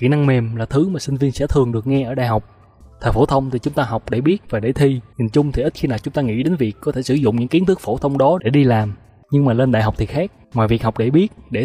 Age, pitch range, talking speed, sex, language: 20-39, 110-145 Hz, 330 wpm, male, Vietnamese